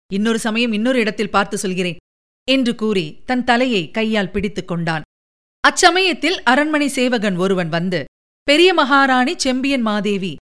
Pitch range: 195-280 Hz